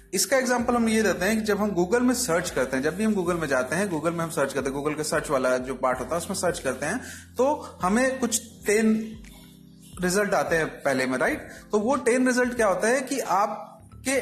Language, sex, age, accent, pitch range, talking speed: Hindi, male, 30-49, native, 165-235 Hz, 245 wpm